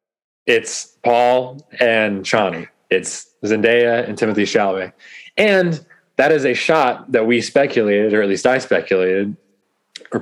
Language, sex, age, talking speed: English, male, 20-39, 135 wpm